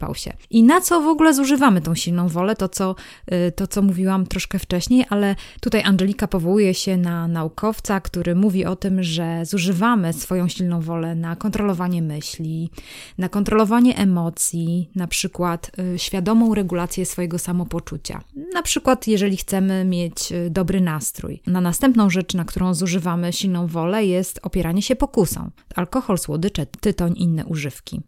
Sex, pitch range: female, 175-215 Hz